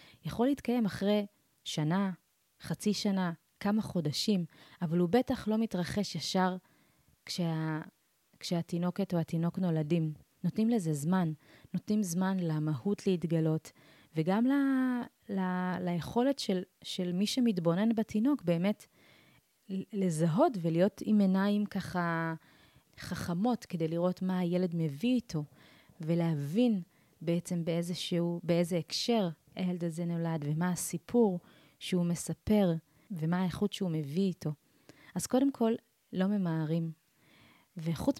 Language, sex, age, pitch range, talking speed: Hebrew, female, 30-49, 165-205 Hz, 115 wpm